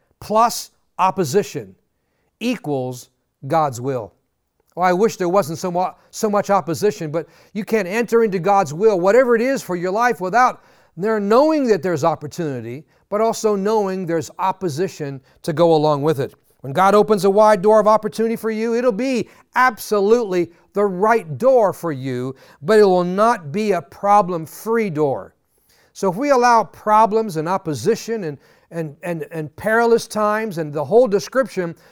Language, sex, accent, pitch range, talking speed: English, male, American, 165-225 Hz, 160 wpm